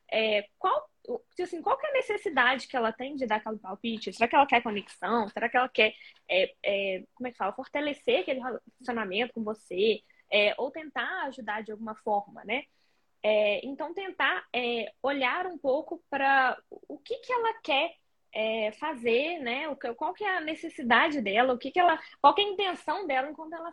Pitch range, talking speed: 230-325 Hz, 195 wpm